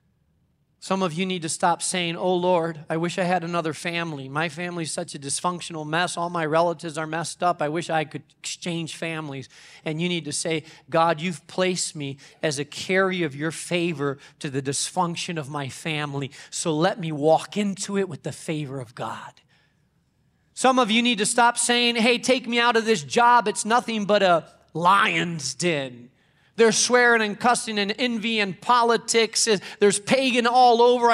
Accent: American